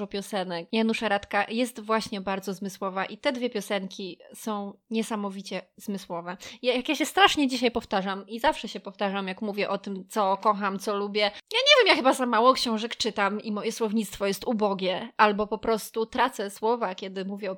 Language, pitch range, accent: Polish, 200-250 Hz, native